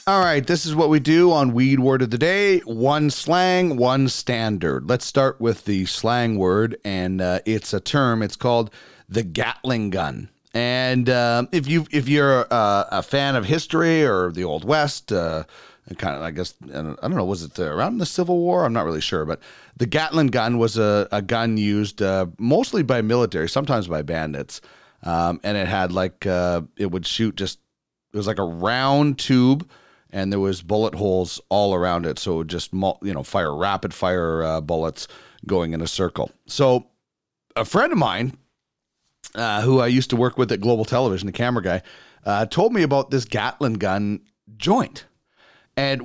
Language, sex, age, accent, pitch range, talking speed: English, male, 30-49, American, 95-135 Hz, 195 wpm